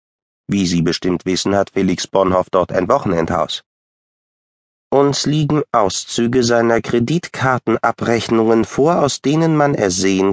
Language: German